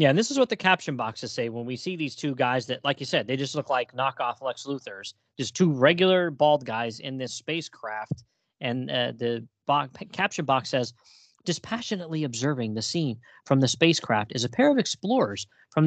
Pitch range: 125-175 Hz